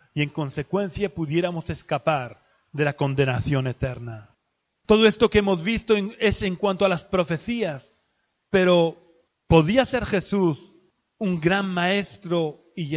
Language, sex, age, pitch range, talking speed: Spanish, male, 30-49, 160-210 Hz, 140 wpm